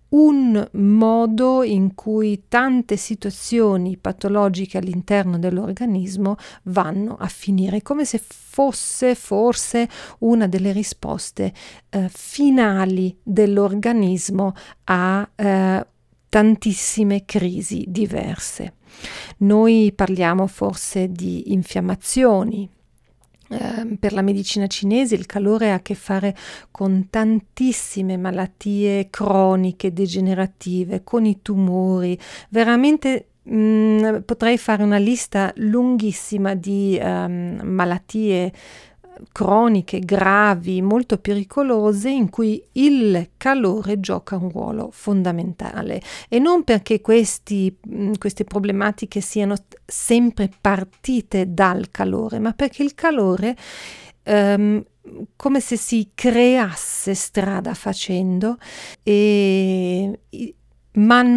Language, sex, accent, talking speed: Italian, female, native, 95 wpm